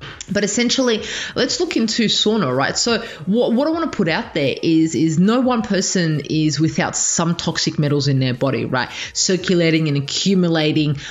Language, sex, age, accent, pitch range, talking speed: English, female, 20-39, Australian, 150-195 Hz, 180 wpm